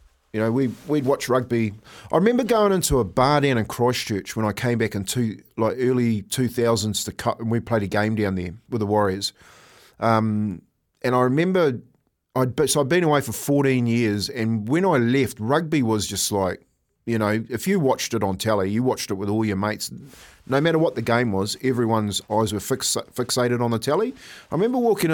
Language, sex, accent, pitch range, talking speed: English, male, Australian, 110-150 Hz, 210 wpm